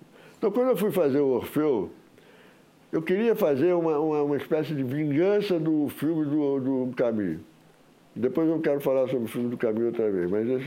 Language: Portuguese